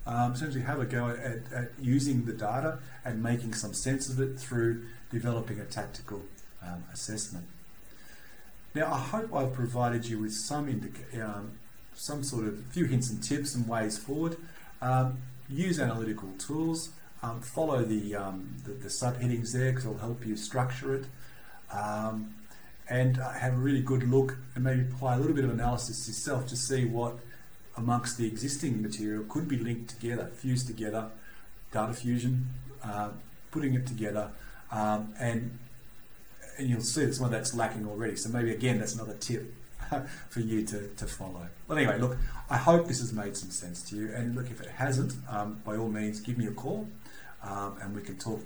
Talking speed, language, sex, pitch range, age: 180 wpm, English, male, 110-130 Hz, 40-59